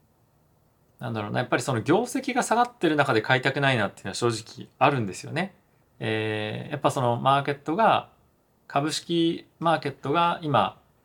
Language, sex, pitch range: Japanese, male, 110-150 Hz